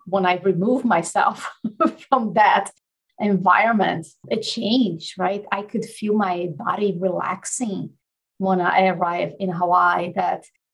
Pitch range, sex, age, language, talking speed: 190-240 Hz, female, 30-49, English, 125 wpm